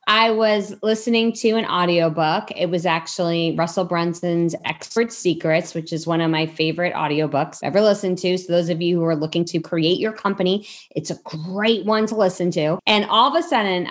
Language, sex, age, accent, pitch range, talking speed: English, female, 20-39, American, 170-230 Hz, 205 wpm